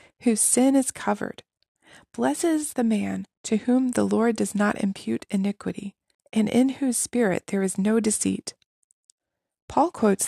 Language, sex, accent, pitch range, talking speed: English, female, American, 200-260 Hz, 145 wpm